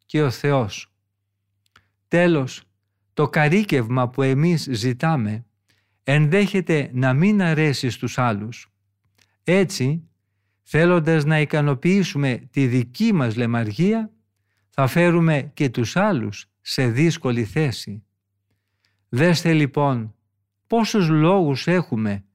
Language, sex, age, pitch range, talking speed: Greek, male, 50-69, 100-155 Hz, 95 wpm